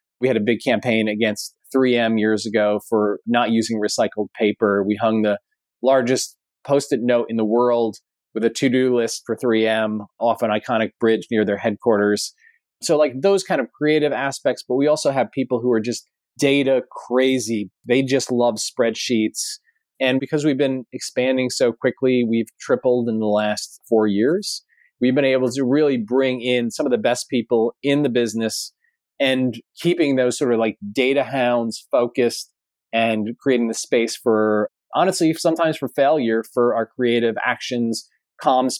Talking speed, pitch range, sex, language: 170 wpm, 110-130 Hz, male, English